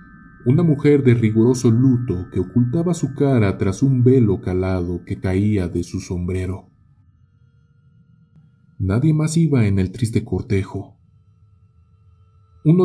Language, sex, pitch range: Spanish, male, 95-130 Hz